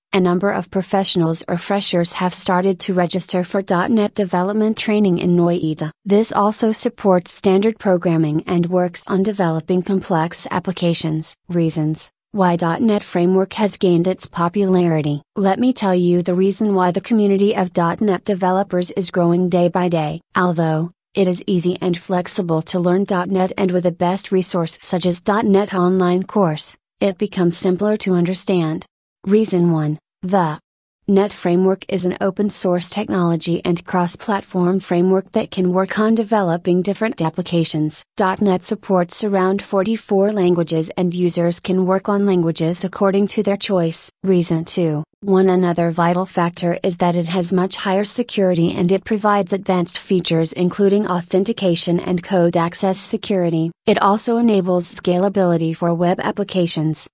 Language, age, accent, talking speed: English, 30-49, American, 150 wpm